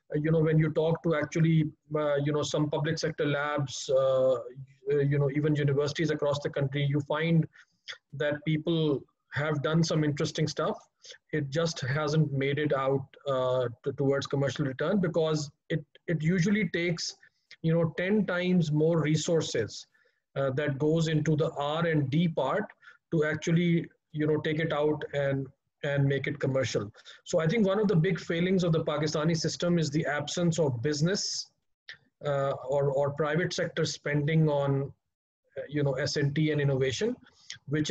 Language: English